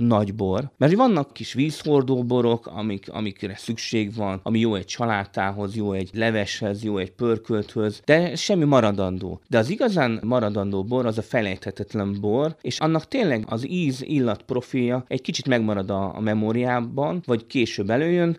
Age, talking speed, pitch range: 30-49, 160 wpm, 105-150 Hz